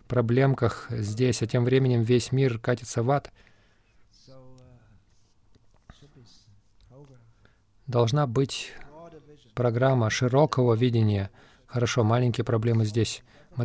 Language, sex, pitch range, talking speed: Russian, male, 115-135 Hz, 90 wpm